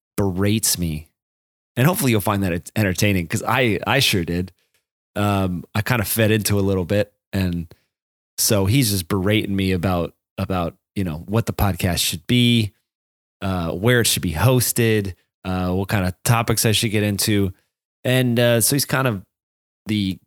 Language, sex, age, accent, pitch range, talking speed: English, male, 30-49, American, 90-110 Hz, 175 wpm